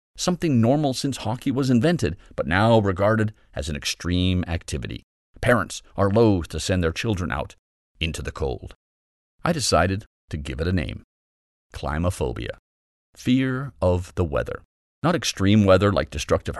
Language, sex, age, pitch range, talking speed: English, male, 40-59, 75-110 Hz, 150 wpm